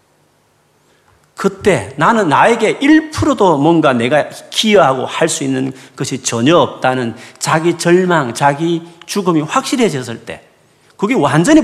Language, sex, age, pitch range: Korean, male, 40-59, 115-180 Hz